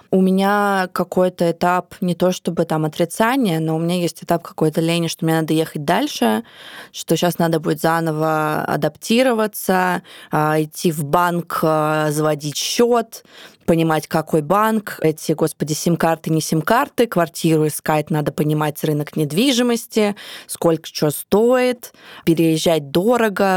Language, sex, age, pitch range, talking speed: Russian, female, 20-39, 160-190 Hz, 130 wpm